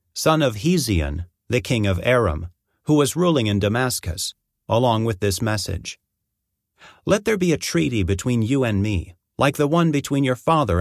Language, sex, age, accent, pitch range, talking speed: English, male, 40-59, American, 100-135 Hz, 170 wpm